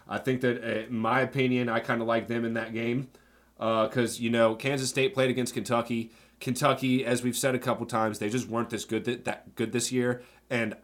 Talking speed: 225 wpm